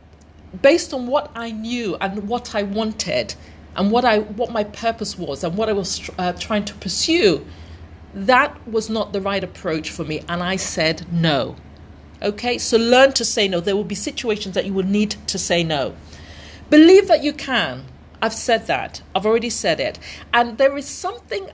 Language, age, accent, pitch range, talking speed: English, 40-59, British, 175-240 Hz, 190 wpm